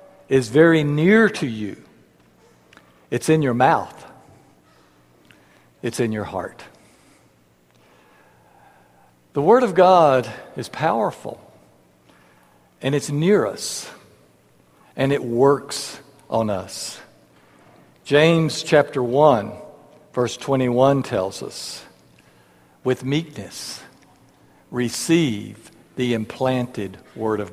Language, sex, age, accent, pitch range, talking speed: English, male, 60-79, American, 95-150 Hz, 90 wpm